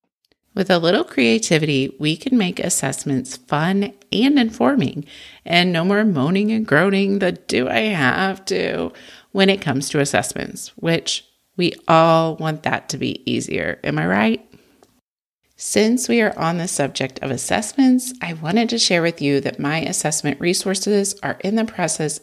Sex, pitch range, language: female, 140-210 Hz, English